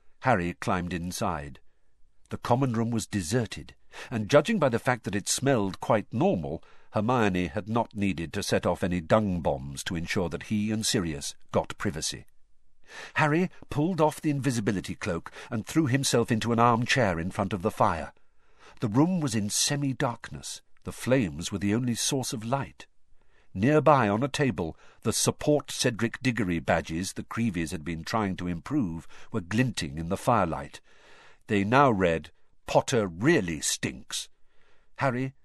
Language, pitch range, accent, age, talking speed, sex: English, 95-135 Hz, British, 50-69, 160 wpm, male